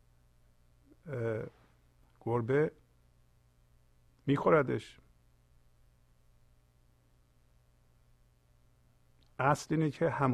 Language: Persian